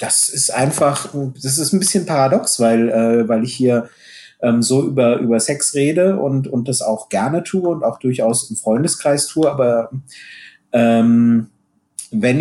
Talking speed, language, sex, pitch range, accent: 165 wpm, German, male, 115-145 Hz, German